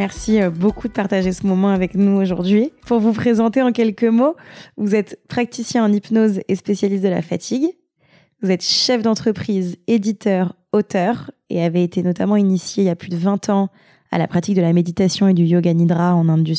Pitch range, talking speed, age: 175-205 Hz, 205 wpm, 20-39